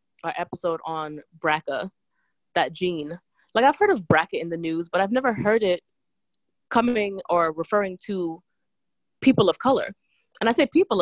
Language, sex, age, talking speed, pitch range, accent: English, female, 20-39, 165 wpm, 165-215 Hz, American